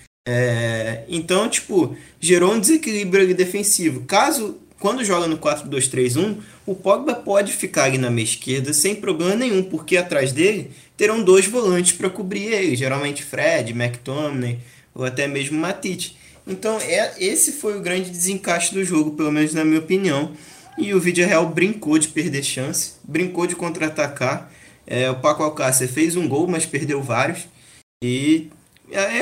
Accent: Brazilian